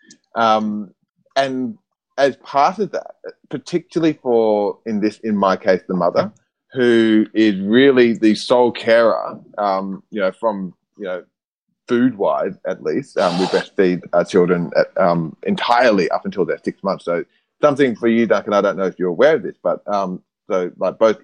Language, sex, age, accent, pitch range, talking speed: English, male, 30-49, Australian, 95-125 Hz, 170 wpm